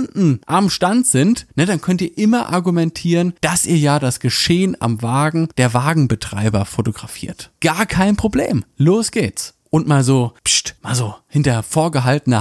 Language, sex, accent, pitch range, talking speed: German, male, German, 135-185 Hz, 150 wpm